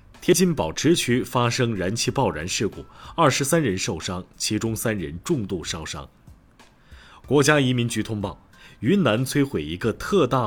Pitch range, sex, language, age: 100-135 Hz, male, Chinese, 30-49